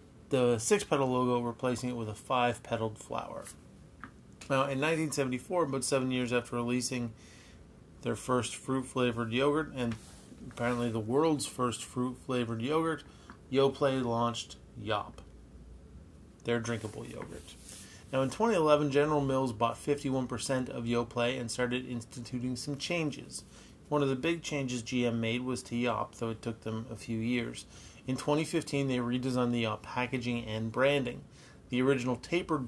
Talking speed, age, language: 140 wpm, 30-49, English